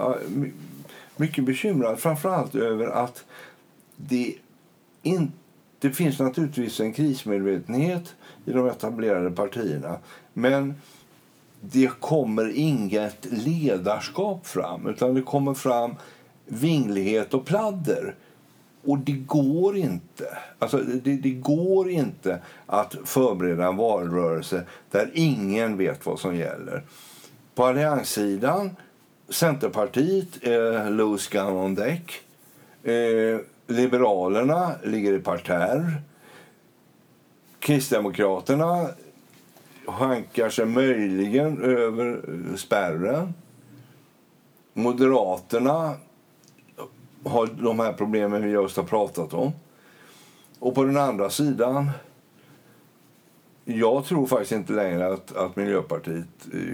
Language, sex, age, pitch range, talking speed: Swedish, male, 60-79, 105-145 Hz, 95 wpm